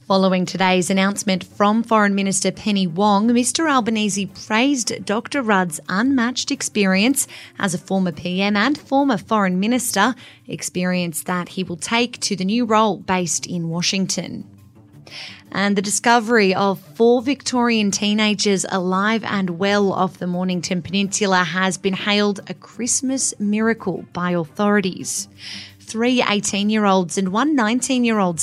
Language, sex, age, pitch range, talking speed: English, female, 30-49, 185-220 Hz, 130 wpm